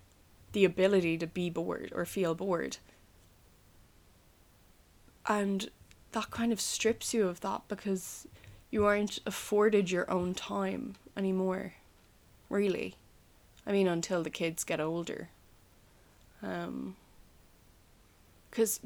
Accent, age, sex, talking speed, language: Irish, 20-39, female, 110 wpm, English